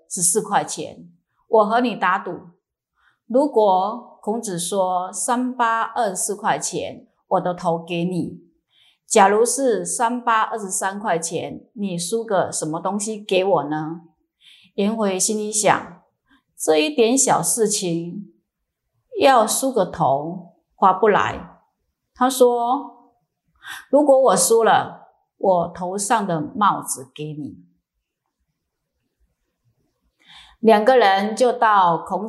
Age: 30-49